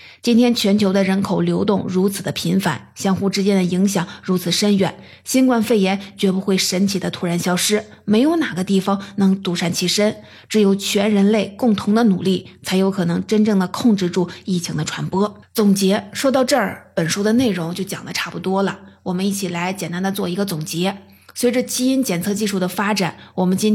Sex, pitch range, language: female, 180-210 Hz, Chinese